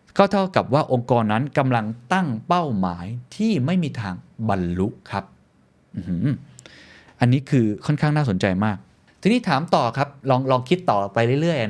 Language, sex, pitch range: Thai, male, 105-145 Hz